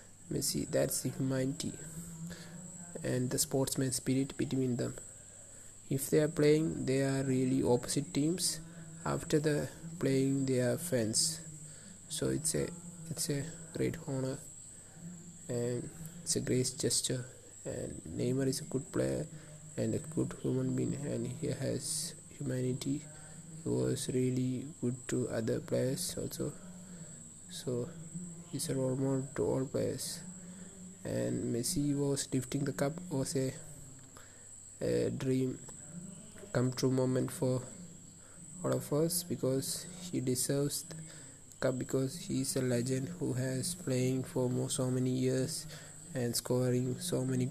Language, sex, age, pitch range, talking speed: English, male, 20-39, 125-155 Hz, 135 wpm